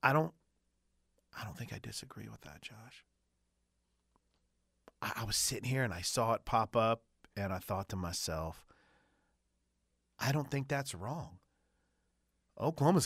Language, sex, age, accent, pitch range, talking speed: English, male, 30-49, American, 105-145 Hz, 145 wpm